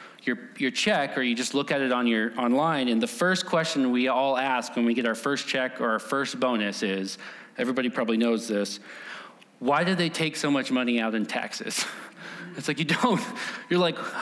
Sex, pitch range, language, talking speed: male, 130-200 Hz, English, 210 wpm